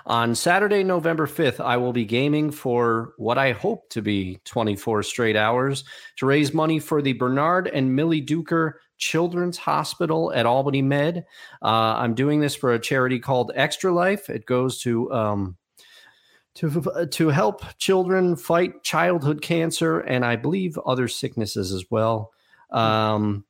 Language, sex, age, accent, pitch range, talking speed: English, male, 40-59, American, 115-155 Hz, 155 wpm